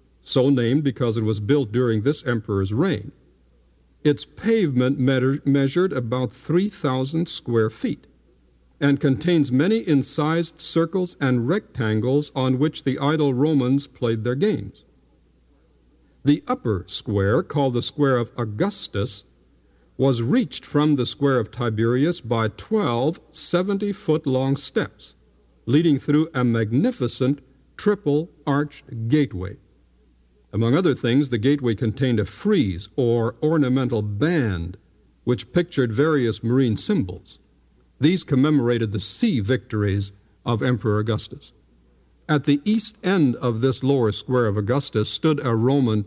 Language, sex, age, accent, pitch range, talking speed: English, male, 60-79, American, 105-145 Hz, 120 wpm